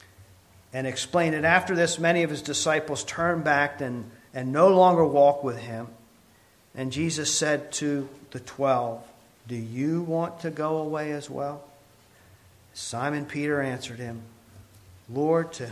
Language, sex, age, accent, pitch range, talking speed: English, male, 50-69, American, 130-185 Hz, 145 wpm